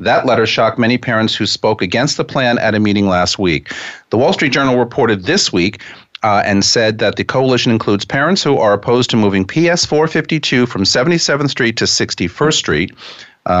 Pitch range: 95-125 Hz